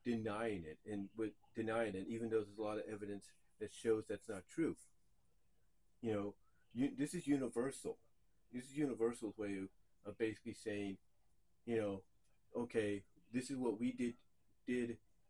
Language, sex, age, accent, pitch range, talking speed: English, male, 40-59, American, 100-115 Hz, 155 wpm